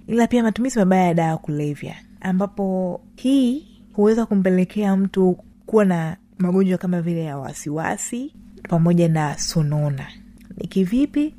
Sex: female